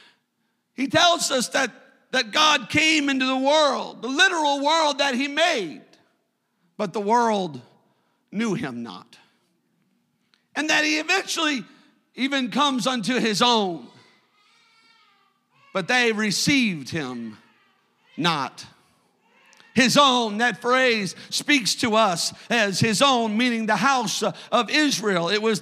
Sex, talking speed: male, 125 wpm